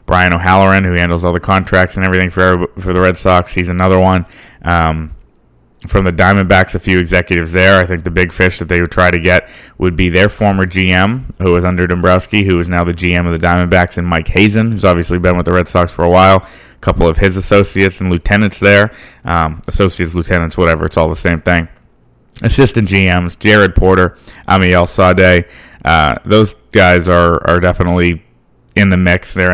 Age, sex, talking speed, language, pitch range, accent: 20-39, male, 200 wpm, English, 85-95 Hz, American